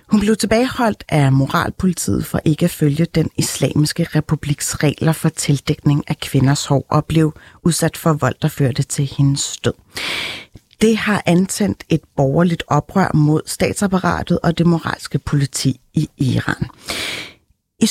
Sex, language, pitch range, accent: female, Danish, 150-195 Hz, native